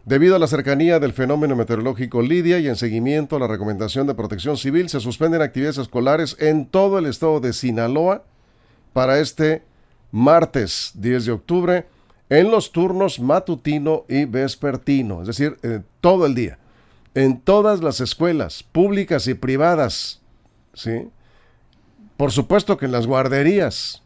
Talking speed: 145 wpm